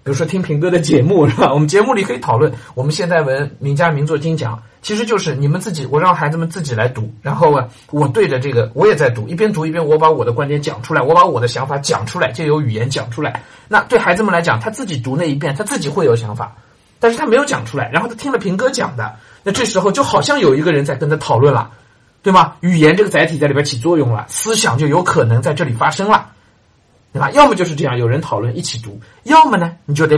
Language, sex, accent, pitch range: Chinese, male, native, 120-165 Hz